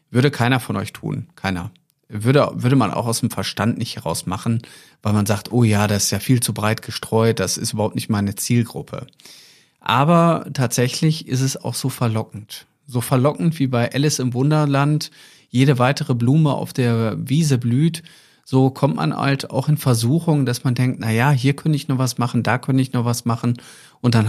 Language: German